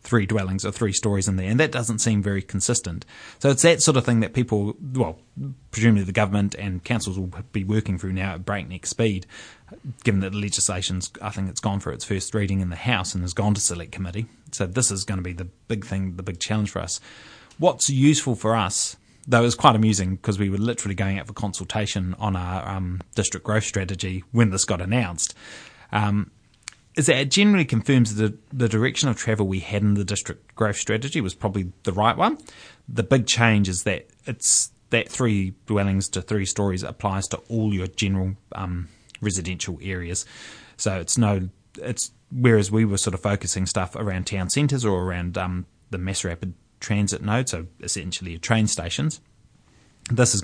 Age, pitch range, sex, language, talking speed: 20-39, 95-115 Hz, male, English, 200 wpm